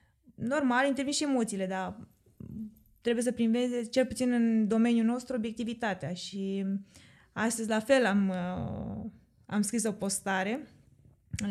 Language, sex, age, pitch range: Romanian, female, 20-39, 205-250 Hz